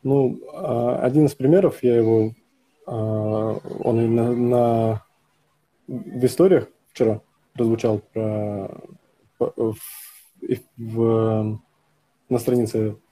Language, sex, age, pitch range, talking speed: Russian, male, 20-39, 110-130 Hz, 70 wpm